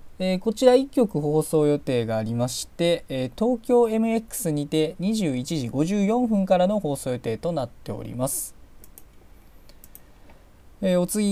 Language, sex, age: Japanese, male, 20-39